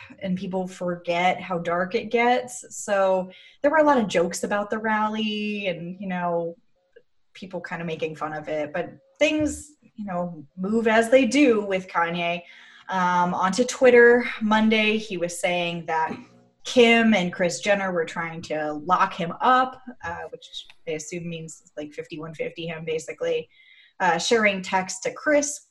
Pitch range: 170-230 Hz